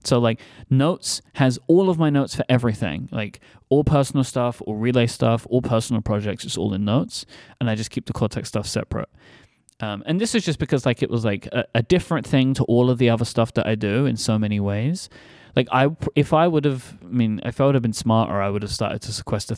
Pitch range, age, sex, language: 105-130 Hz, 20-39, male, English